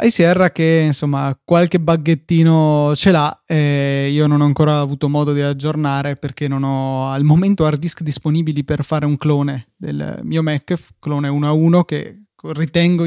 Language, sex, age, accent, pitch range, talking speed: Italian, male, 20-39, native, 145-170 Hz, 165 wpm